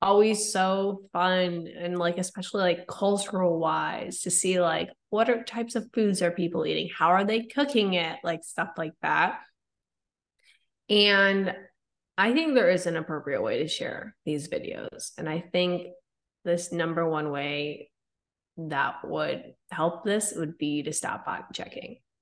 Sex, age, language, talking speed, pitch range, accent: female, 20-39, English, 155 wpm, 165-200 Hz, American